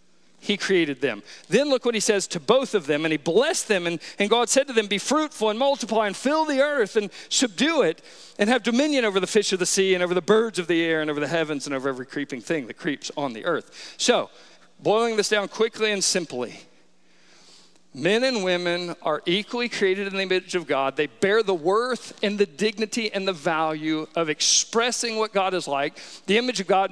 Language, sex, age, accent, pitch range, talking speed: English, male, 50-69, American, 185-265 Hz, 225 wpm